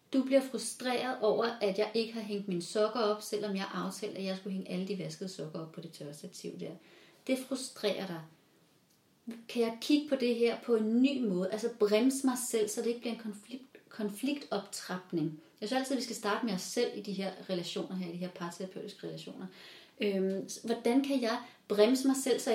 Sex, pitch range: female, 195-250 Hz